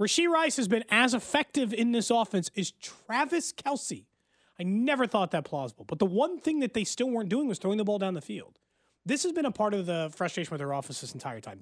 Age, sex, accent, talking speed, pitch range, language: 30-49, male, American, 245 wpm, 170-250 Hz, English